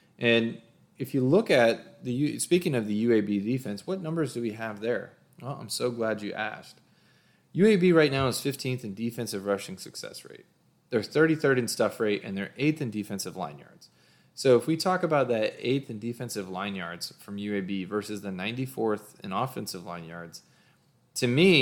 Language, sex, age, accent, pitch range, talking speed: English, male, 20-39, American, 105-135 Hz, 185 wpm